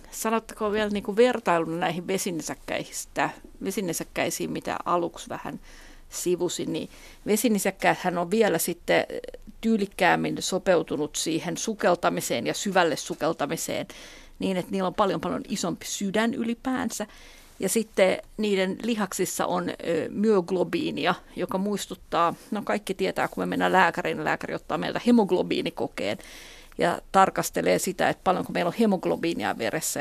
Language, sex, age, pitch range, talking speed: Finnish, female, 50-69, 180-225 Hz, 120 wpm